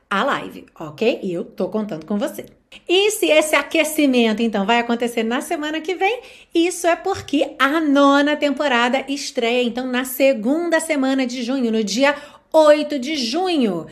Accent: Brazilian